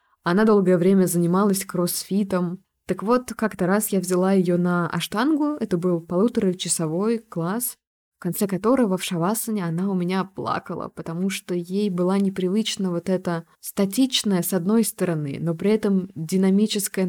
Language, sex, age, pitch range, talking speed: Russian, female, 20-39, 160-200 Hz, 150 wpm